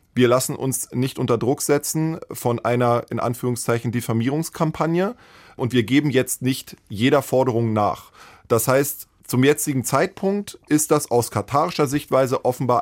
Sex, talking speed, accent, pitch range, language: male, 145 wpm, German, 115-145 Hz, German